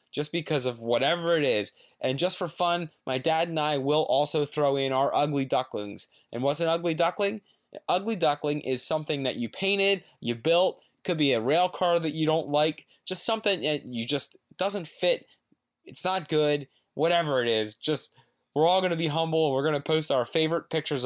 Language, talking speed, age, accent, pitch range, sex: English, 205 wpm, 20-39, American, 120-155 Hz, male